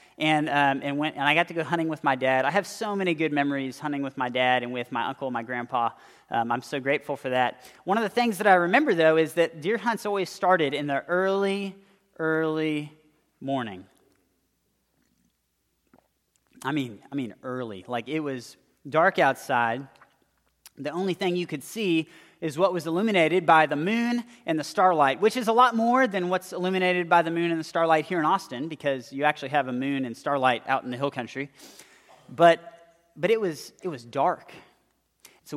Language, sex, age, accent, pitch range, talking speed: English, male, 30-49, American, 135-175 Hz, 200 wpm